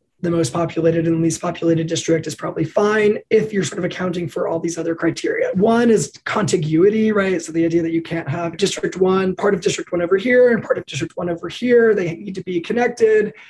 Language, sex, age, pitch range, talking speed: English, male, 20-39, 165-195 Hz, 225 wpm